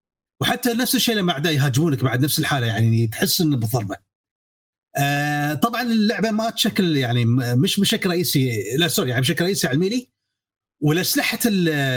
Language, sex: Arabic, male